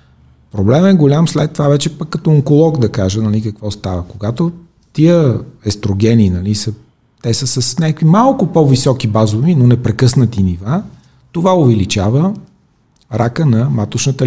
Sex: male